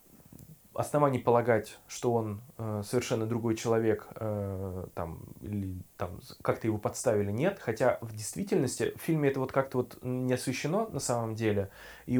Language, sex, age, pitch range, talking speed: Russian, male, 20-39, 110-140 Hz, 130 wpm